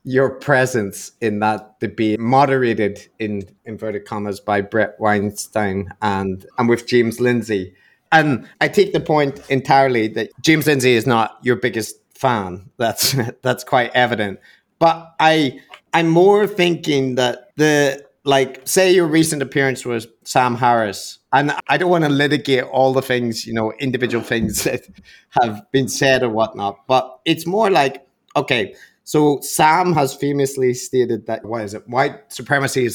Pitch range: 115-145 Hz